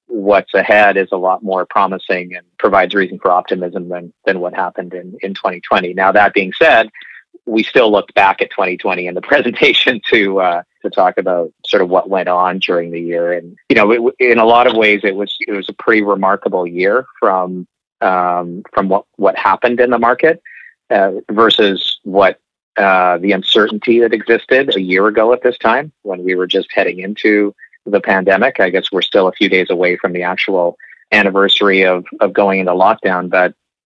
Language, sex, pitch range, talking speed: English, male, 90-105 Hz, 195 wpm